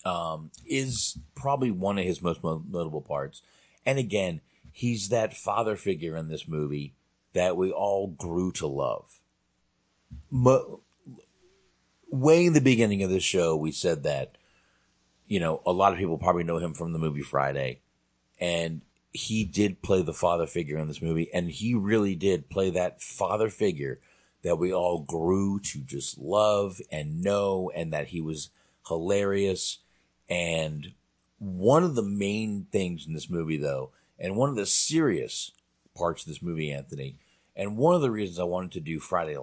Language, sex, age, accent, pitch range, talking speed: English, male, 40-59, American, 75-100 Hz, 165 wpm